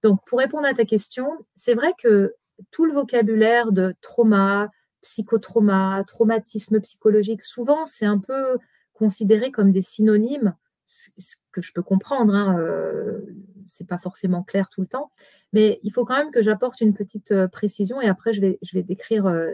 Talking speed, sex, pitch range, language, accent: 170 wpm, female, 195-250 Hz, French, French